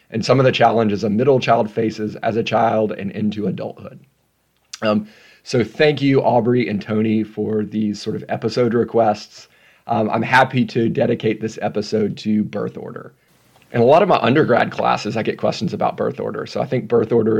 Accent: American